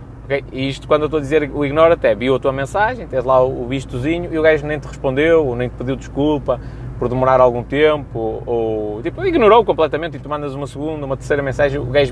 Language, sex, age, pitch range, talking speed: Portuguese, male, 20-39, 130-195 Hz, 250 wpm